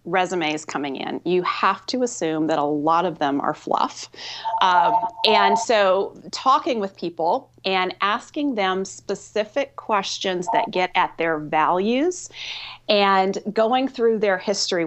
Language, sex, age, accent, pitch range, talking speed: English, female, 30-49, American, 170-215 Hz, 140 wpm